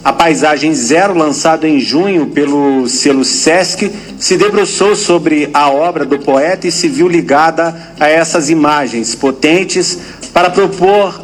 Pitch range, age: 150-190 Hz, 50-69